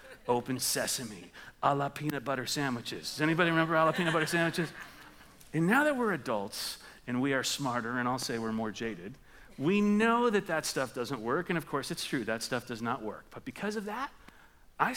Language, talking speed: English, 210 wpm